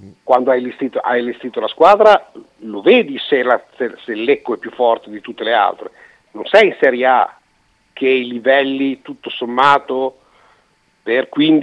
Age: 50-69